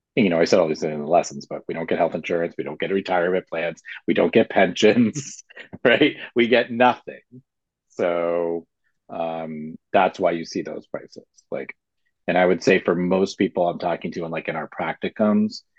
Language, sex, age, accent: English, male, 40-59, American